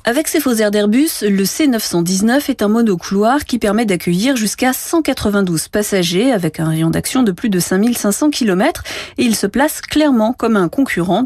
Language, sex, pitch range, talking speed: French, female, 170-235 Hz, 175 wpm